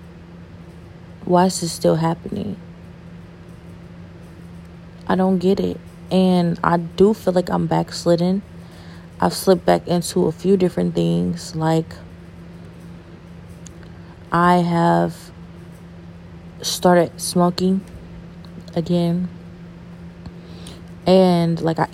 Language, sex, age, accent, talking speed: English, female, 20-39, American, 90 wpm